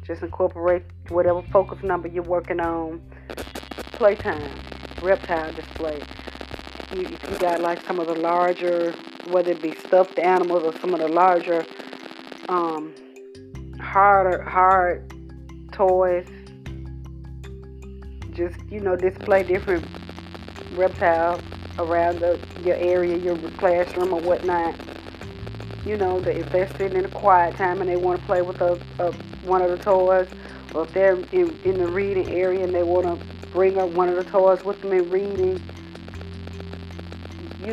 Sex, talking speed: female, 145 wpm